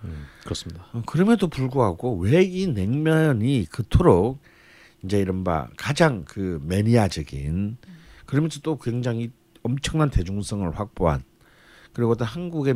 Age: 50-69